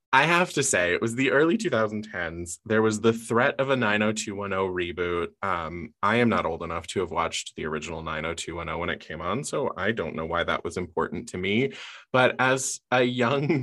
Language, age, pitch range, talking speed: English, 20-39, 95-120 Hz, 205 wpm